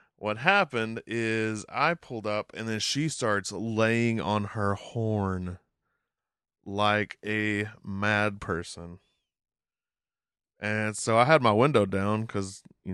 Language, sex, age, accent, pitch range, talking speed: English, male, 20-39, American, 100-115 Hz, 125 wpm